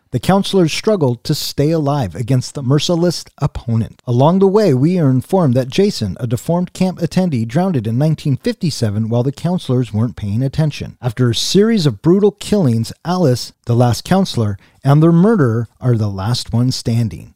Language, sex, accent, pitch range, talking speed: English, male, American, 125-175 Hz, 170 wpm